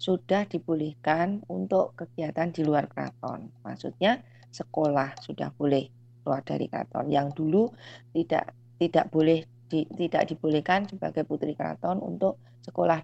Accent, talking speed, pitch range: native, 125 wpm, 120-165 Hz